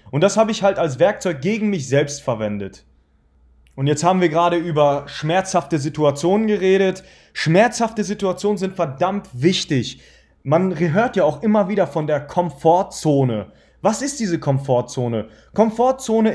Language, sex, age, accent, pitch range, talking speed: German, male, 30-49, German, 150-215 Hz, 145 wpm